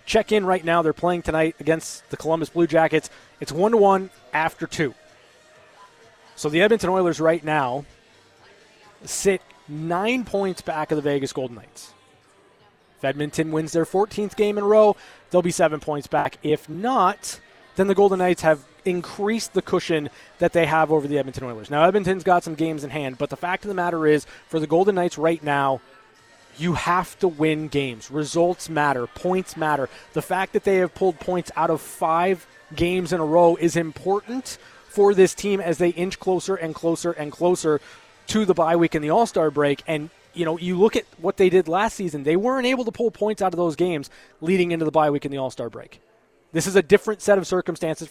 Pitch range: 155-190 Hz